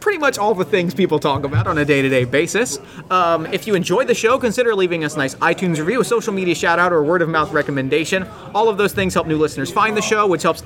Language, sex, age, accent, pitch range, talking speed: English, male, 30-49, American, 160-210 Hz, 255 wpm